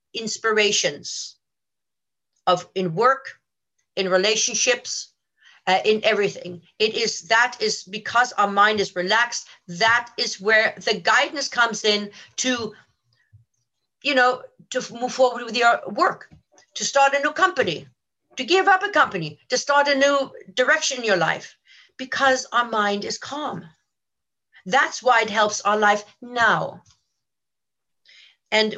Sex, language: female, English